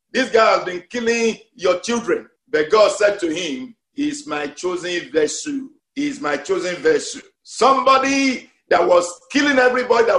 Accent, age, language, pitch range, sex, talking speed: Nigerian, 50-69, English, 190-285 Hz, male, 155 wpm